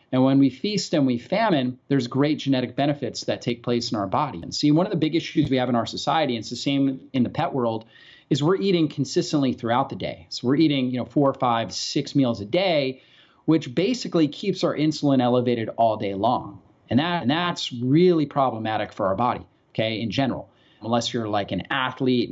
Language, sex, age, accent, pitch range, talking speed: English, male, 30-49, American, 120-150 Hz, 220 wpm